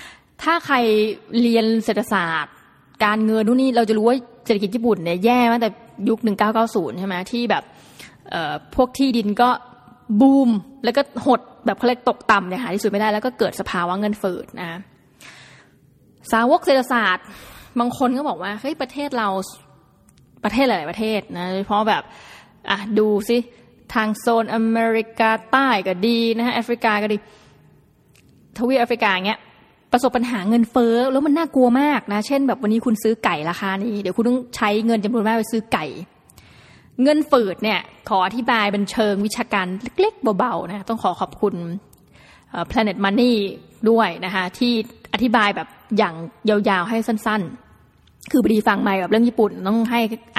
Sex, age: female, 20-39